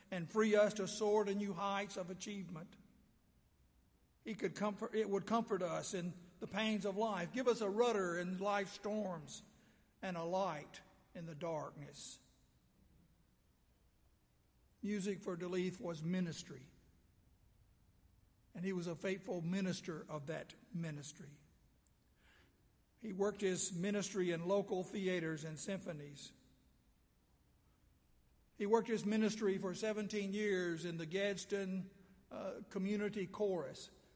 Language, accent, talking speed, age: English, American, 125 wpm, 60-79